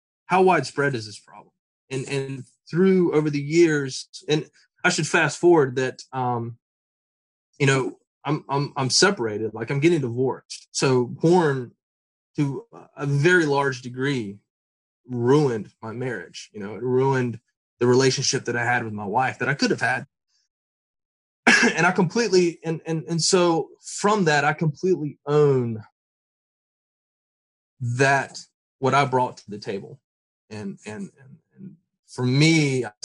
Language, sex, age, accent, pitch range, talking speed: English, male, 20-39, American, 115-145 Hz, 145 wpm